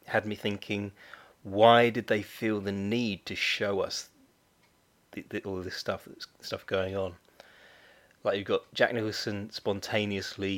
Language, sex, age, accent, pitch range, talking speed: English, male, 30-49, British, 95-115 Hz, 140 wpm